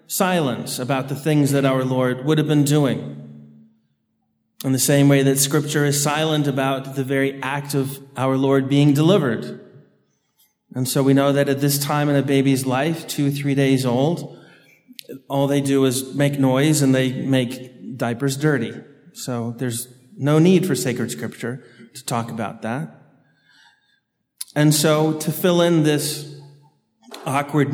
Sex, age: male, 30-49